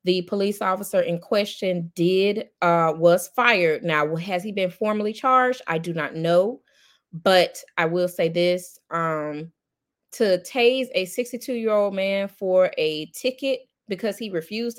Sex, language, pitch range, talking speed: female, English, 175-225 Hz, 155 wpm